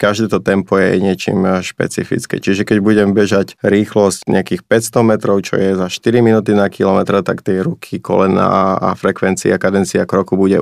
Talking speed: 170 wpm